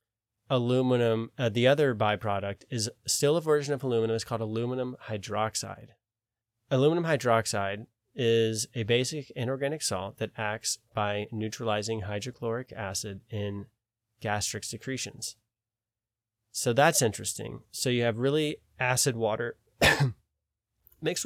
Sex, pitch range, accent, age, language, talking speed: male, 110-125 Hz, American, 20-39, English, 115 wpm